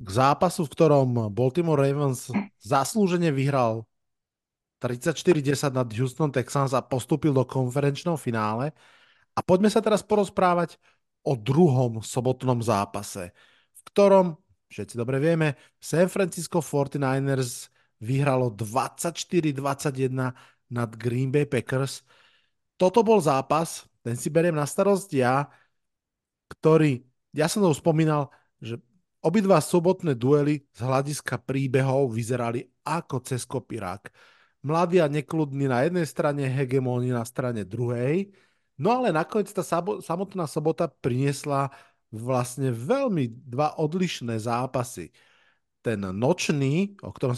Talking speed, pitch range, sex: 115 wpm, 125-160 Hz, male